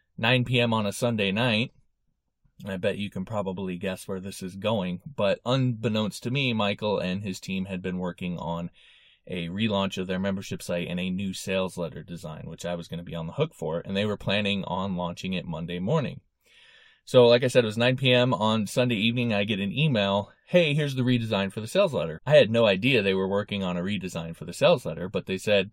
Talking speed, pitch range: 230 wpm, 90-120 Hz